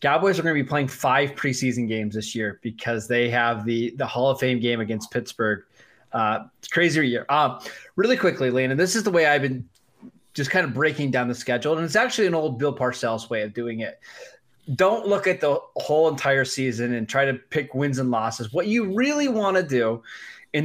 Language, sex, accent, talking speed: English, male, American, 220 wpm